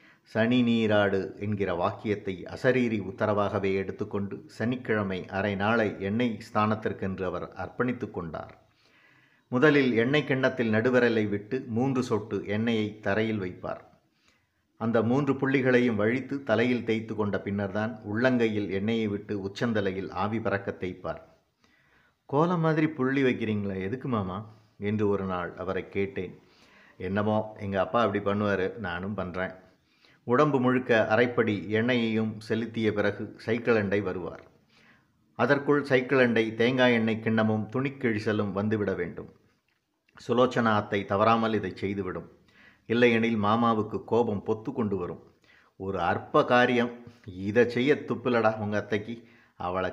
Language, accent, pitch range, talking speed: Tamil, native, 100-120 Hz, 115 wpm